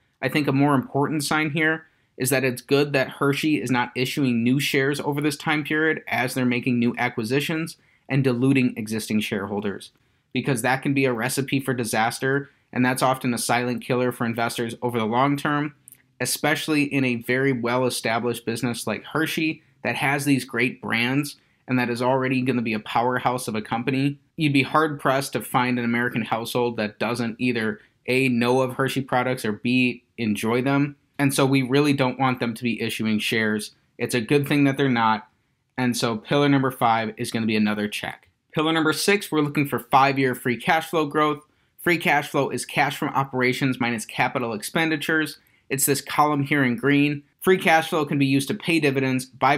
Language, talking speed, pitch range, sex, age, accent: English, 195 wpm, 120-145 Hz, male, 30-49, American